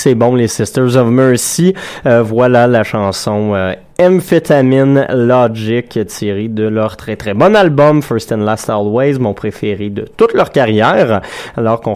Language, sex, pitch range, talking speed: French, male, 110-140 Hz, 160 wpm